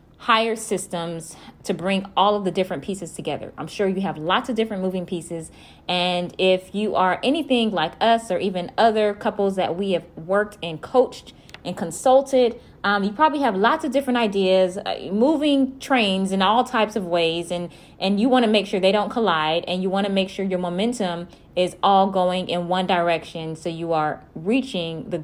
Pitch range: 170-210 Hz